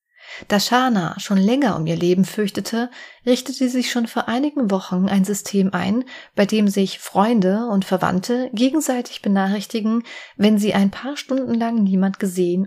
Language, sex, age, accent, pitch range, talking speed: German, female, 30-49, German, 190-235 Hz, 160 wpm